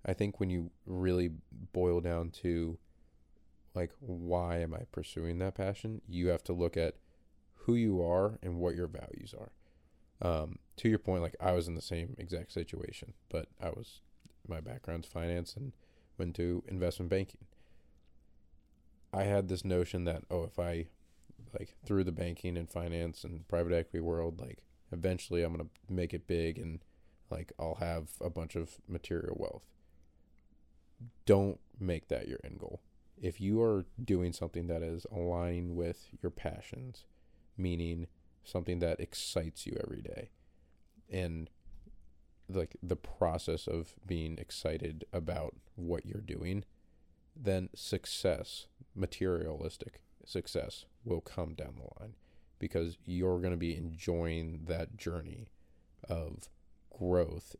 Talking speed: 145 wpm